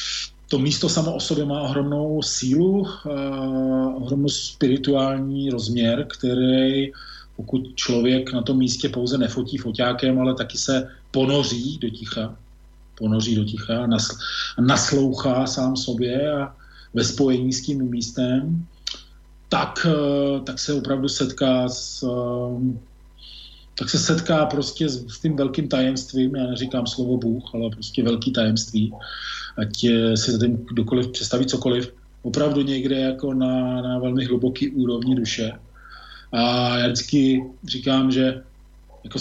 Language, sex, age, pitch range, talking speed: Slovak, male, 40-59, 120-140 Hz, 120 wpm